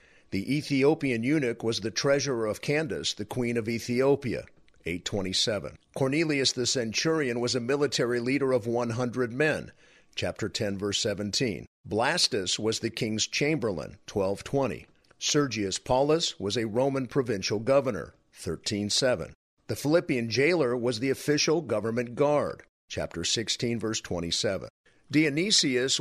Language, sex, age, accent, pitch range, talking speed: English, male, 50-69, American, 105-140 Hz, 125 wpm